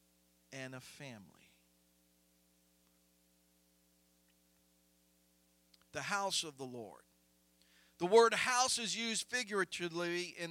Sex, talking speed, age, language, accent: male, 85 wpm, 50-69, English, American